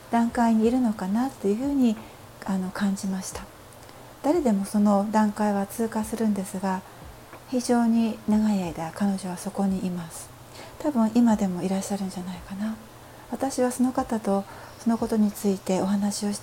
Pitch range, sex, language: 195-235 Hz, female, Japanese